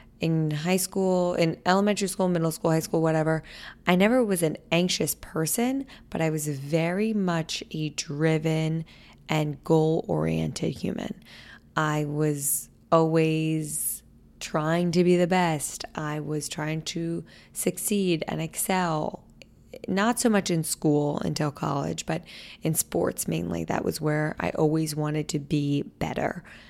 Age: 20-39